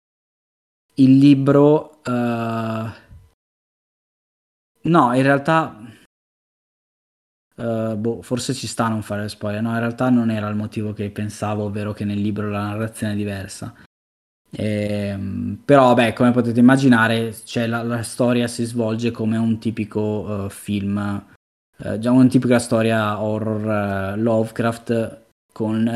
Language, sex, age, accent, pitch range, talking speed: Italian, male, 20-39, native, 105-125 Hz, 135 wpm